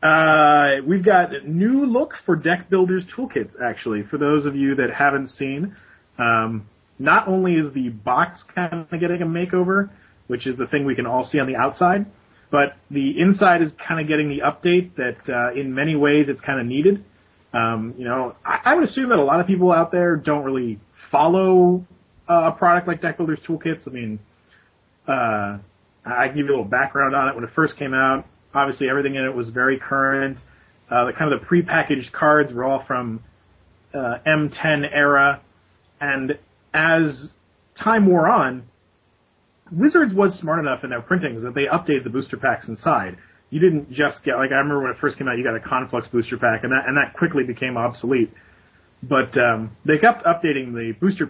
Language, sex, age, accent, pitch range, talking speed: English, male, 30-49, American, 125-170 Hz, 200 wpm